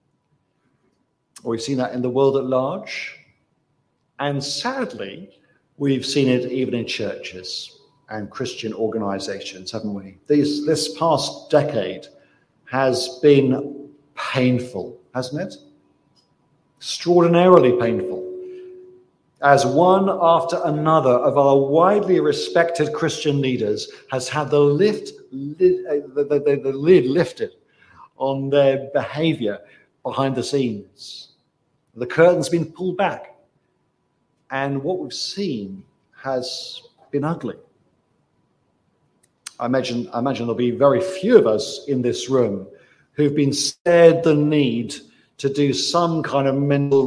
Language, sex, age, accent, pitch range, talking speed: English, male, 50-69, British, 125-160 Hz, 120 wpm